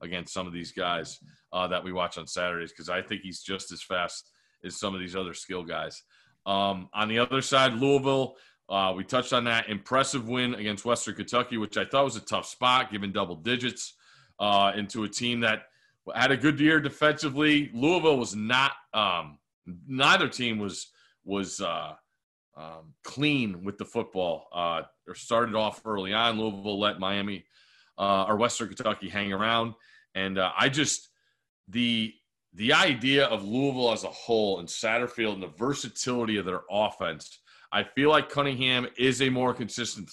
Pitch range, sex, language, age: 95-125 Hz, male, English, 30-49